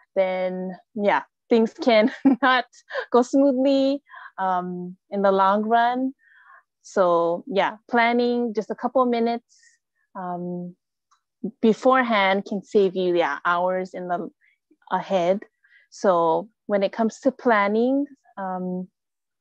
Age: 20-39